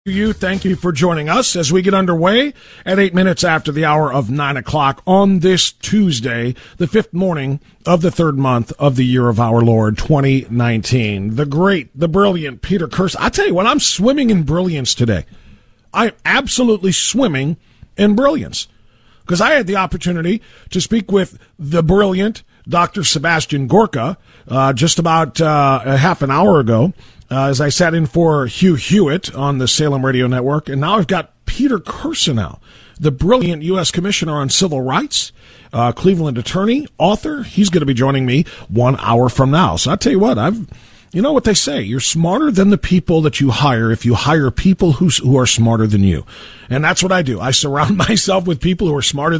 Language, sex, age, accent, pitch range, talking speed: English, male, 40-59, American, 130-190 Hz, 195 wpm